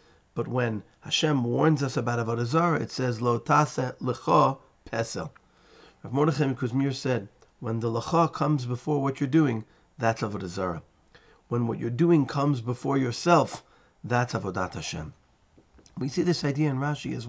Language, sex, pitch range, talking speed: English, male, 110-145 Hz, 155 wpm